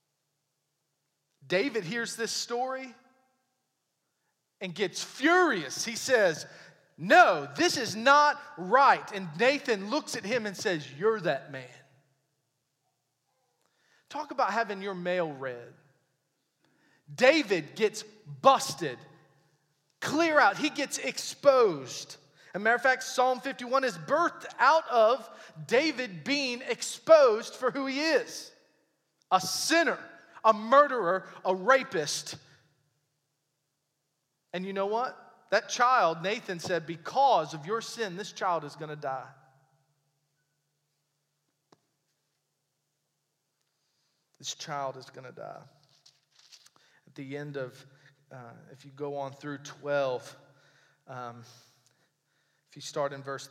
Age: 30-49